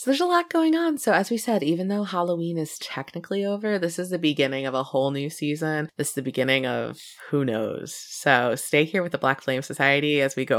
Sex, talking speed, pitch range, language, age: female, 240 wpm, 140-190 Hz, English, 20-39